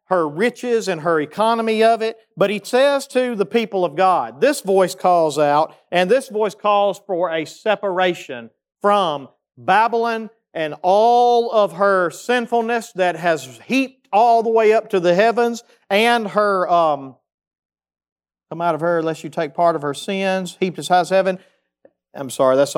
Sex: male